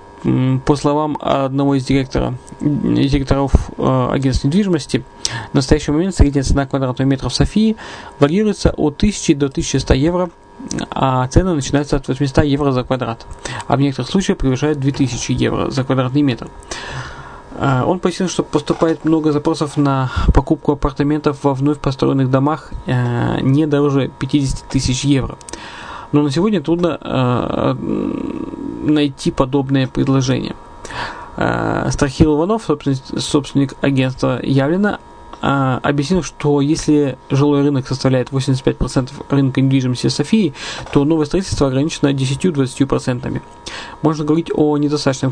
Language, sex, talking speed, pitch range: Russian, male, 120 wpm, 135-155 Hz